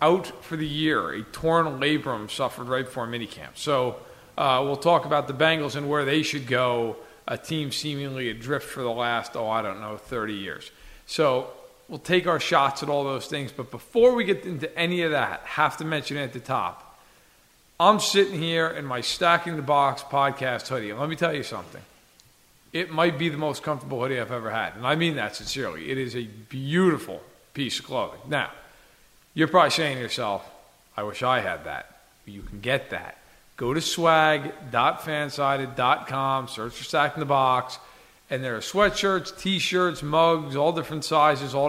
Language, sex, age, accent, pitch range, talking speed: English, male, 40-59, American, 125-160 Hz, 190 wpm